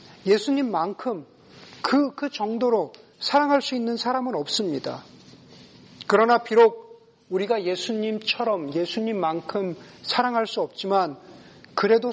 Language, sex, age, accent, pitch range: Korean, male, 40-59, native, 200-275 Hz